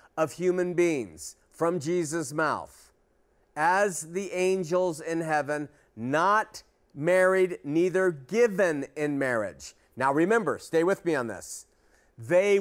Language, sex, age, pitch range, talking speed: English, male, 40-59, 150-200 Hz, 120 wpm